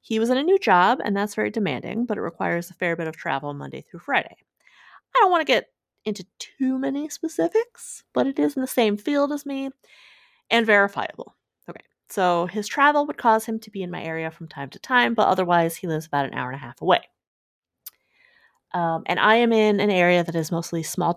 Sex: female